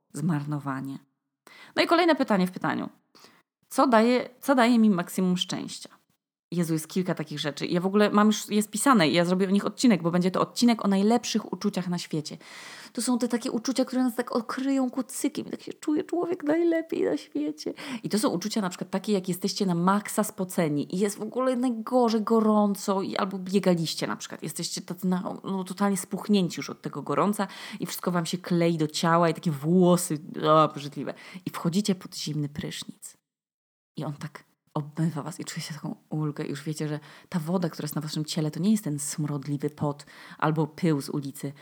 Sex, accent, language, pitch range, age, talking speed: female, native, Polish, 150-205 Hz, 20-39, 190 wpm